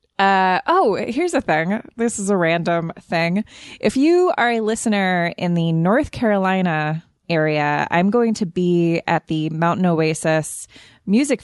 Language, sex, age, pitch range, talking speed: English, female, 20-39, 160-205 Hz, 150 wpm